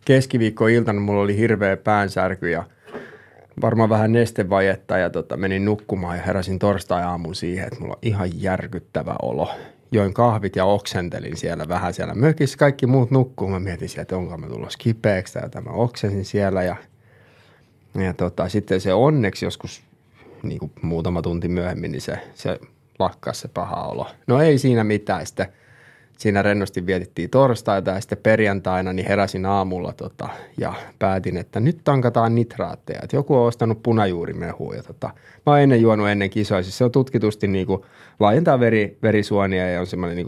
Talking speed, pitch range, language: 165 wpm, 95-115 Hz, Finnish